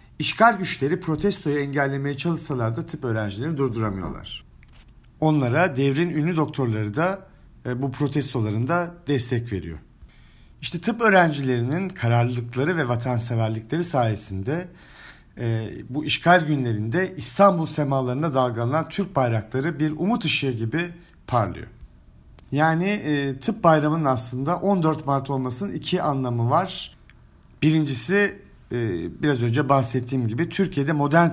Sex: male